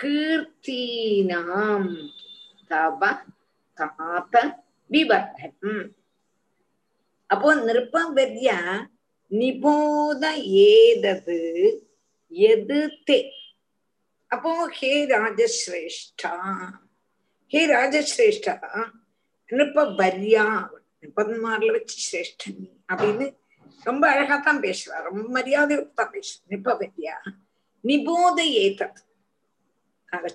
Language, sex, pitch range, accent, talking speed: Tamil, female, 195-325 Hz, native, 45 wpm